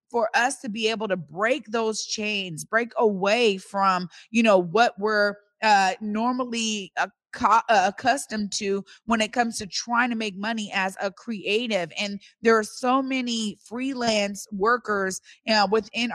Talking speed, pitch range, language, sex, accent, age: 145 wpm, 195-240 Hz, English, female, American, 30-49